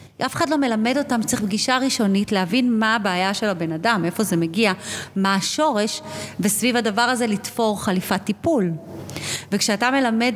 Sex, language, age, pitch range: female, Hebrew, 30-49, 195-250 Hz